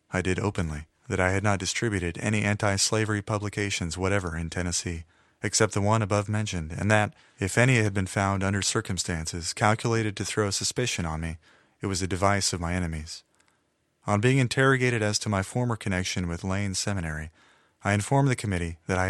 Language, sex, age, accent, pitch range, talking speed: English, male, 30-49, American, 90-110 Hz, 180 wpm